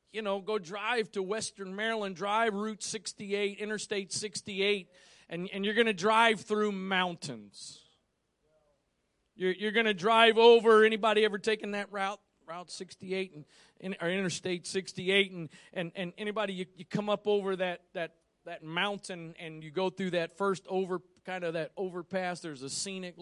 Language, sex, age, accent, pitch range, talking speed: English, male, 40-59, American, 180-220 Hz, 165 wpm